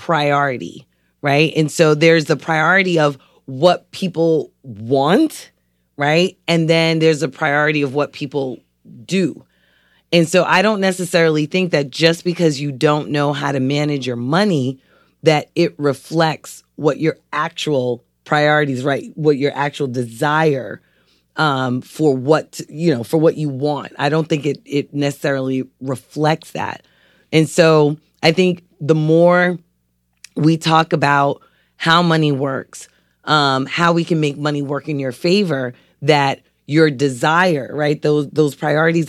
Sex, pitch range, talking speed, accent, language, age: female, 135-160 Hz, 150 wpm, American, English, 30-49